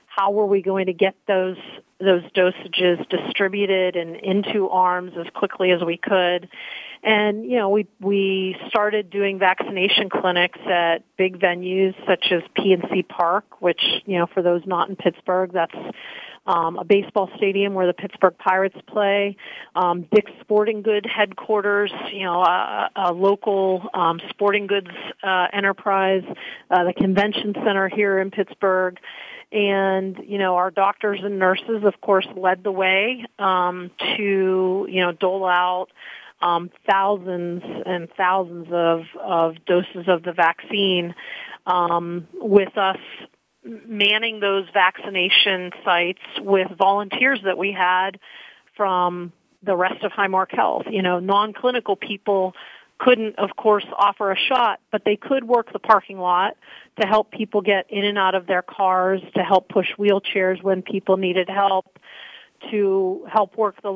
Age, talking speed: 40-59, 150 wpm